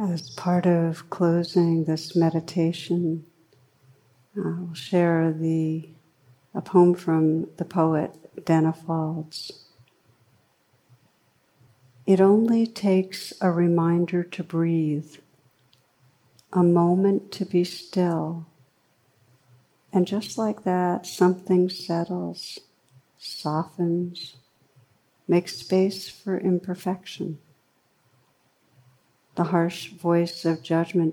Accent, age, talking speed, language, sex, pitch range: American, 60-79, 85 wpm, English, female, 145-180 Hz